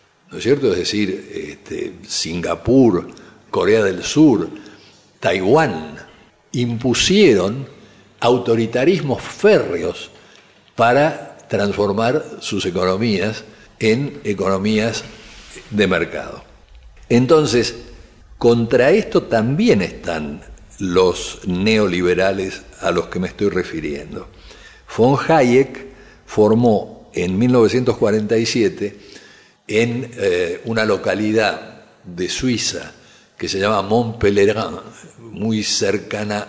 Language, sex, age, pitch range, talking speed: Spanish, male, 60-79, 100-135 Hz, 85 wpm